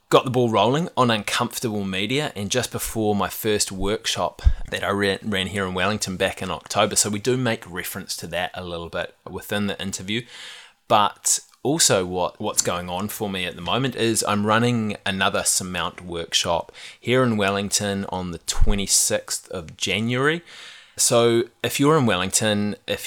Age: 20-39